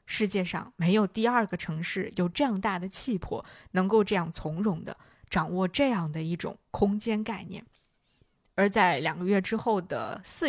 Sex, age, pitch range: female, 20-39, 180-230 Hz